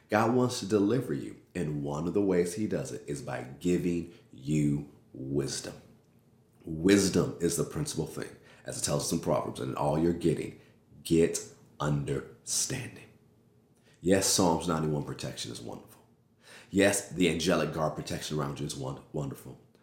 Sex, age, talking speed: male, 40-59, 155 wpm